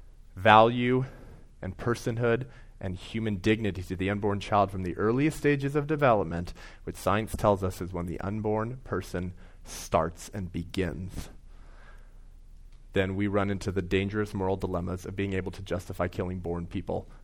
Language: English